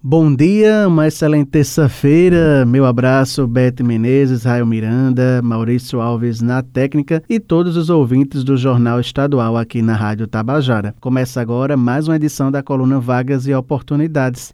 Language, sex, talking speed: Portuguese, male, 150 wpm